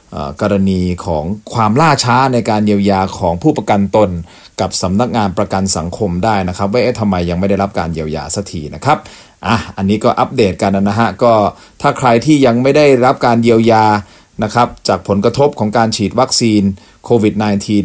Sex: male